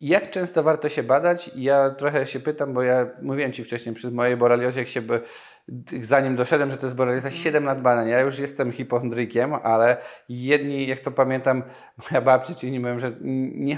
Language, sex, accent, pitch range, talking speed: Polish, male, native, 125-150 Hz, 195 wpm